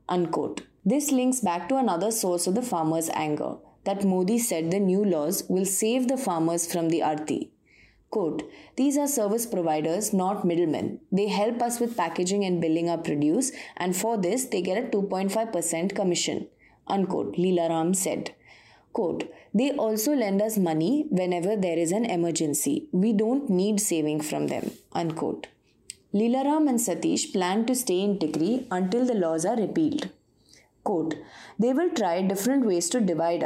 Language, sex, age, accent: English, female, 20-39, Indian